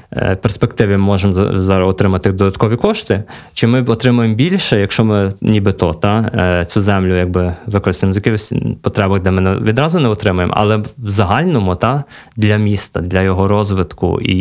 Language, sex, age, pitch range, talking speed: Ukrainian, male, 20-39, 95-115 Hz, 140 wpm